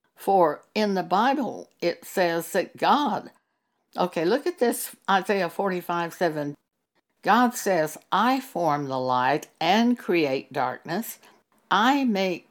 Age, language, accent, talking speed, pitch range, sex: 60-79, English, American, 125 wpm, 165-235 Hz, female